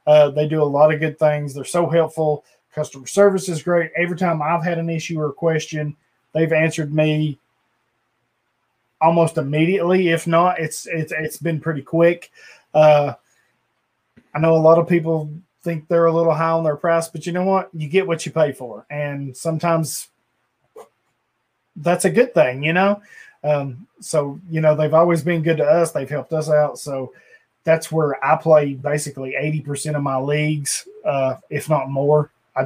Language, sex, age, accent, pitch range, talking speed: English, male, 20-39, American, 145-165 Hz, 180 wpm